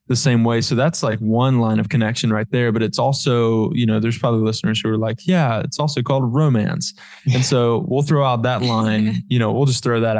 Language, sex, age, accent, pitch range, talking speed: English, male, 20-39, American, 110-145 Hz, 240 wpm